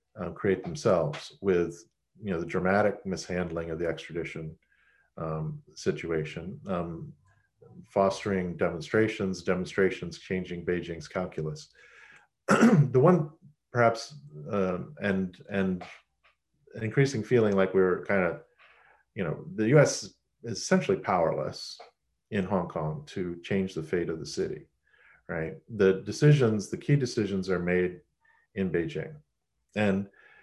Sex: male